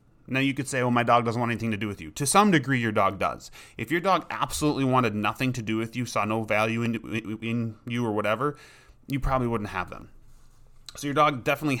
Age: 30-49